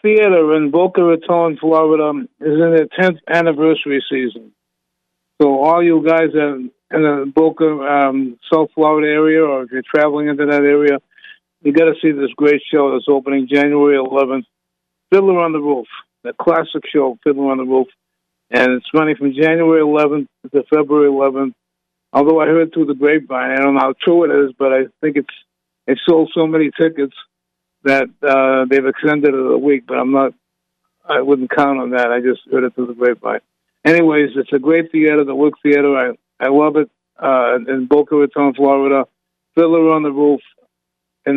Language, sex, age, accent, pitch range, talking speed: English, male, 50-69, American, 130-155 Hz, 185 wpm